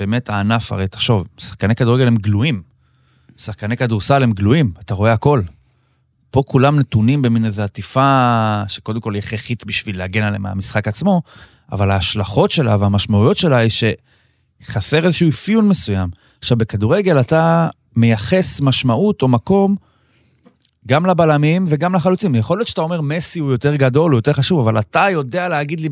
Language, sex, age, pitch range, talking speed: Hebrew, male, 30-49, 110-160 Hz, 155 wpm